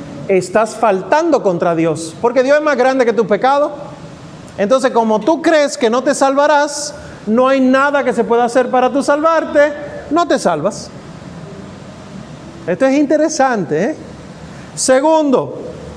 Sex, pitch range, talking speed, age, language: male, 190-275 Hz, 140 wpm, 40-59, Spanish